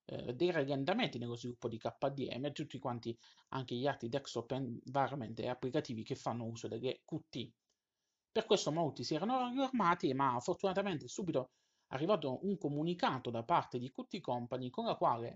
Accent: native